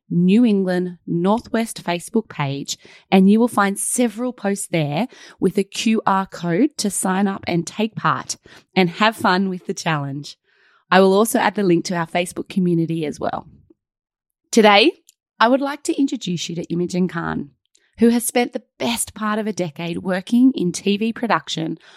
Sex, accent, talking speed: female, Australian, 170 wpm